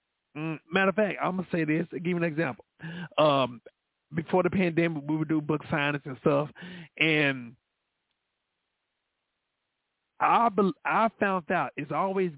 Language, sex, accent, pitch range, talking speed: English, male, American, 145-185 Hz, 155 wpm